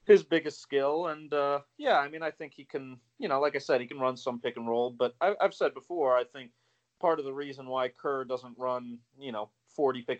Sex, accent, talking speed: male, American, 245 wpm